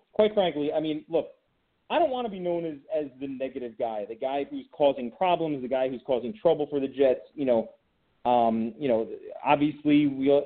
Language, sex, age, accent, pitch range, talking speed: English, male, 30-49, American, 125-160 Hz, 210 wpm